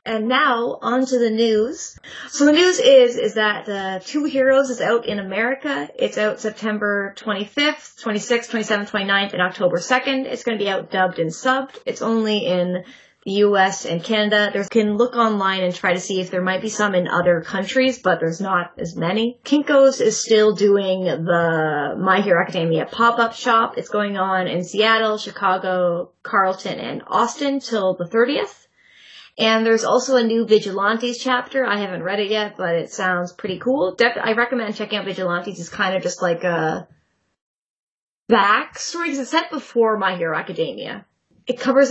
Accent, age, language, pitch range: American, 20-39, English, 190-245 Hz